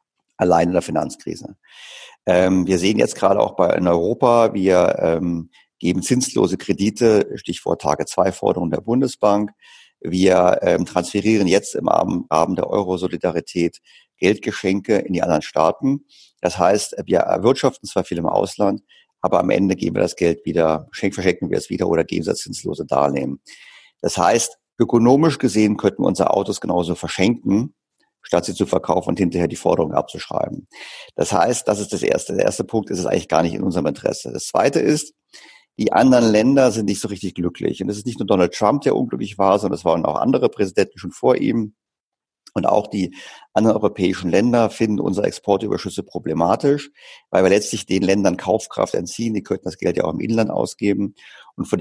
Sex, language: male, German